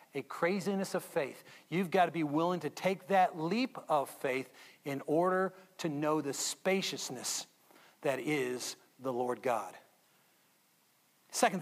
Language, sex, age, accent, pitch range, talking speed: English, male, 40-59, American, 190-285 Hz, 140 wpm